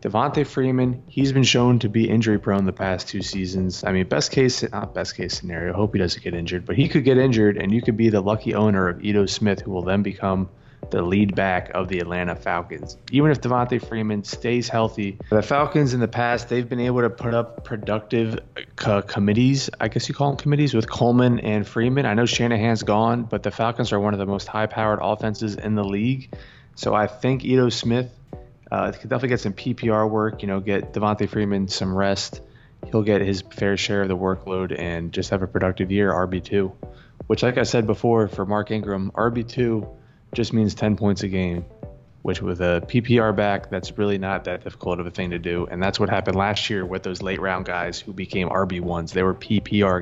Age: 20-39